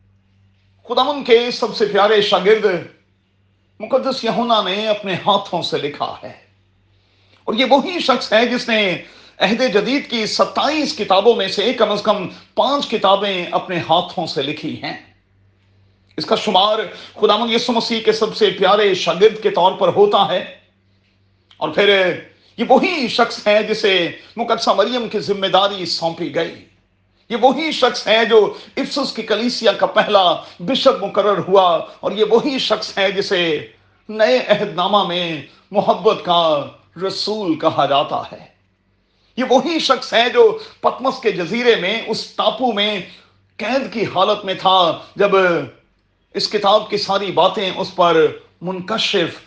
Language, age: Urdu, 40-59